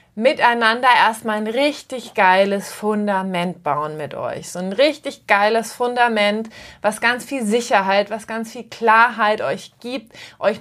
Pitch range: 210-250 Hz